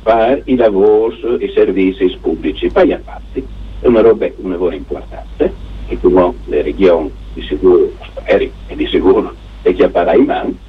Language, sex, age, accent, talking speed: Italian, male, 60-79, native, 180 wpm